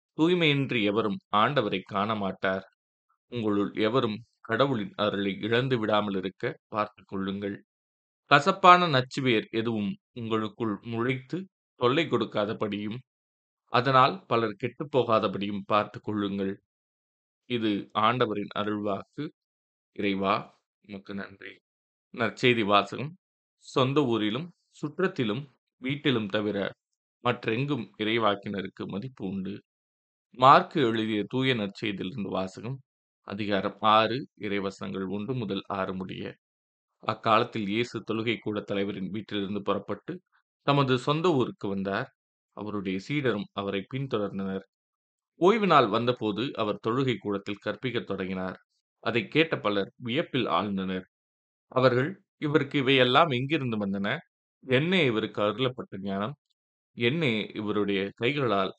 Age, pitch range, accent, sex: 20-39, 100-125 Hz, native, male